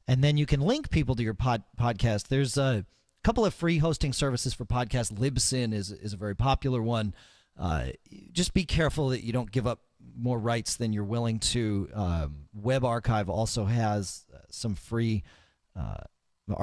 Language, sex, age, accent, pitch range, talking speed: English, male, 40-59, American, 105-140 Hz, 175 wpm